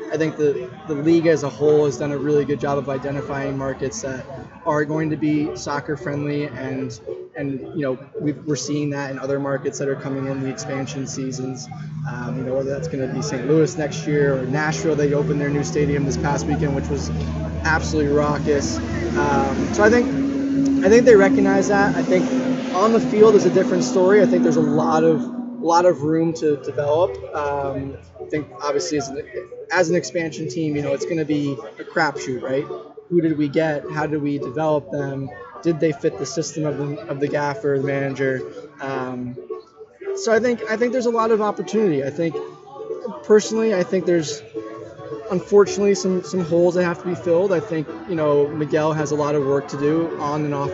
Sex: male